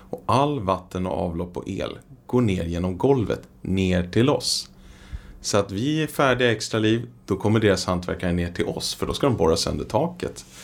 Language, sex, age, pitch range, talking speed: Swedish, male, 30-49, 85-110 Hz, 195 wpm